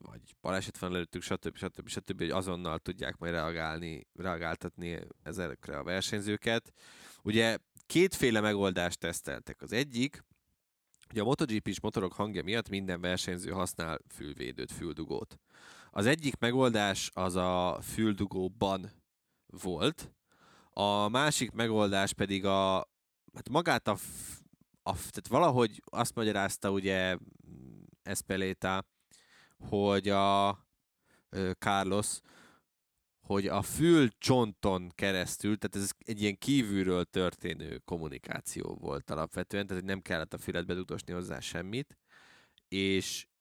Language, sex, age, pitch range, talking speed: Hungarian, male, 20-39, 90-105 Hz, 110 wpm